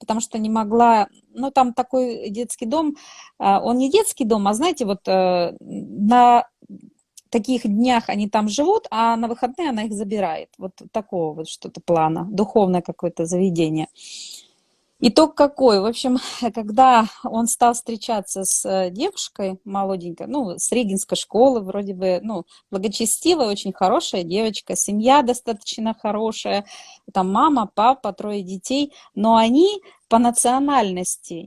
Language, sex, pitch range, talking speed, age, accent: Russian, female, 195-260 Hz, 135 wpm, 30-49, native